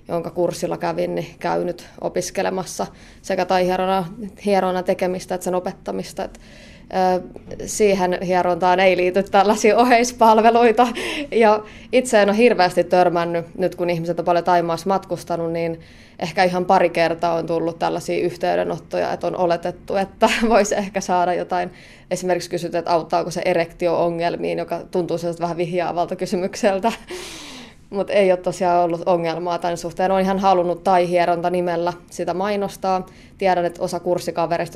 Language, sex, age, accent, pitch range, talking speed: Finnish, female, 20-39, native, 170-195 Hz, 140 wpm